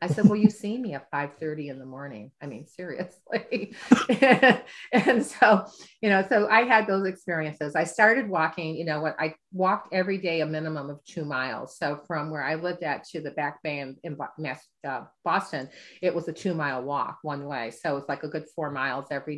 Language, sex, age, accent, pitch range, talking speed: English, female, 40-59, American, 155-195 Hz, 205 wpm